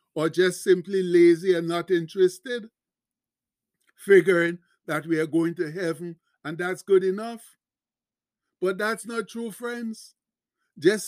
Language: English